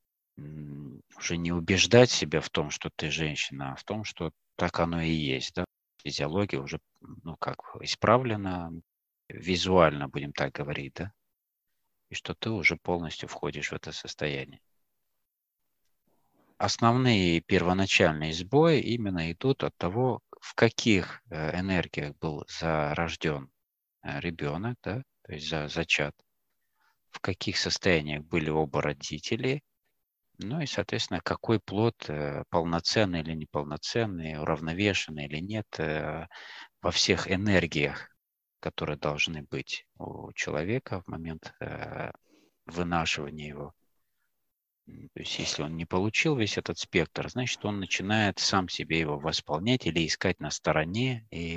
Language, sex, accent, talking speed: Russian, male, native, 120 wpm